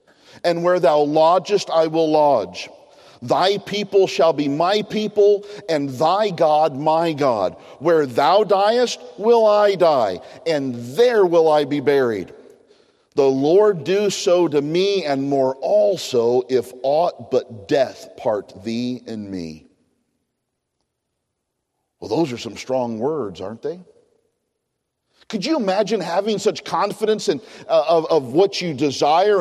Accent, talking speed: American, 135 wpm